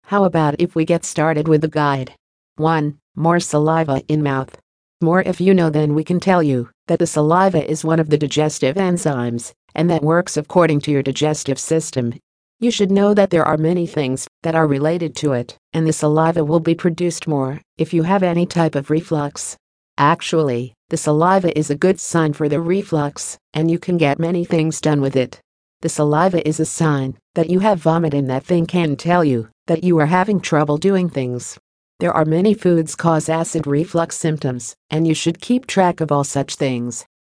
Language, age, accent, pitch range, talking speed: English, 50-69, American, 145-175 Hz, 200 wpm